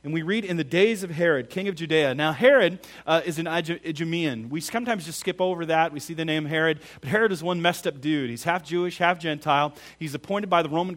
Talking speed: 250 wpm